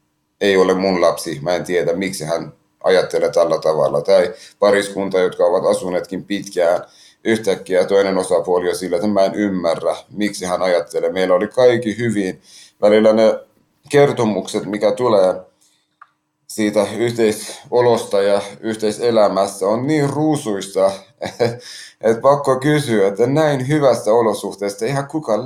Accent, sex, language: native, male, Finnish